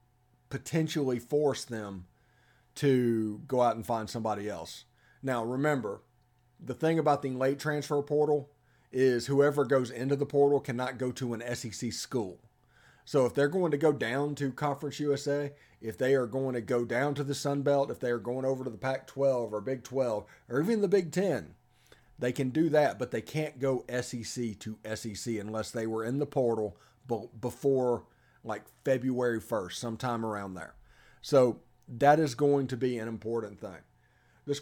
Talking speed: 175 wpm